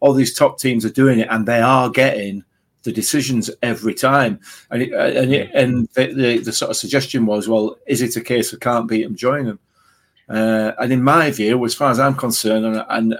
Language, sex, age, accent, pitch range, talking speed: English, male, 40-59, British, 115-135 Hz, 215 wpm